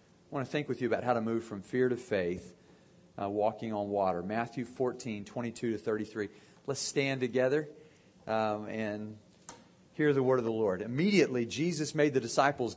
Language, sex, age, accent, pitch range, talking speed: English, male, 40-59, American, 115-155 Hz, 185 wpm